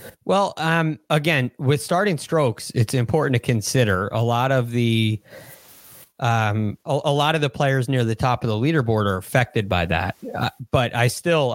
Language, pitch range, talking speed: English, 110-140 Hz, 180 wpm